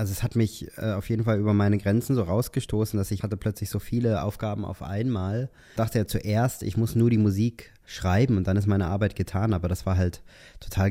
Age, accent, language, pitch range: 20-39, German, German, 95-110 Hz